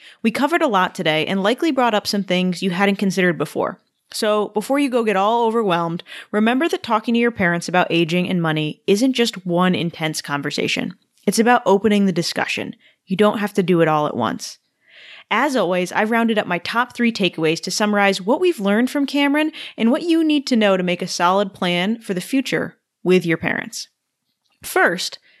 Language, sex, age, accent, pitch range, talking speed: English, female, 20-39, American, 180-240 Hz, 200 wpm